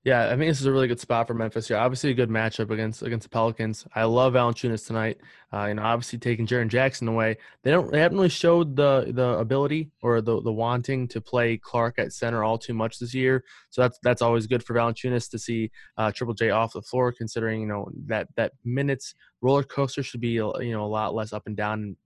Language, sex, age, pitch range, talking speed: English, male, 20-39, 115-130 Hz, 245 wpm